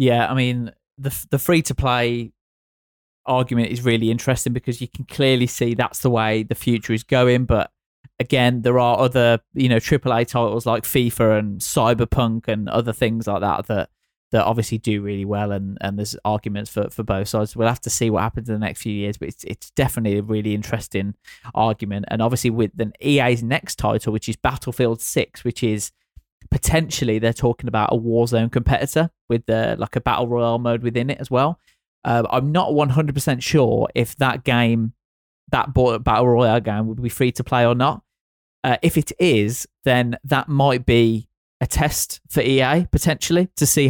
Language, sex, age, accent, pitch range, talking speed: English, male, 20-39, British, 115-130 Hz, 195 wpm